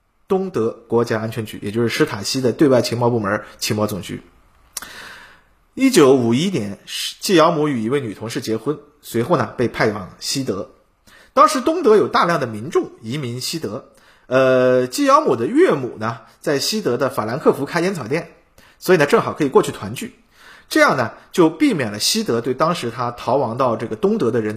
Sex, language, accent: male, Chinese, native